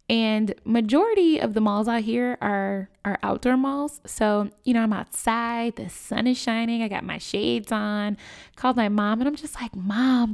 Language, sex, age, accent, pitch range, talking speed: English, female, 10-29, American, 195-240 Hz, 190 wpm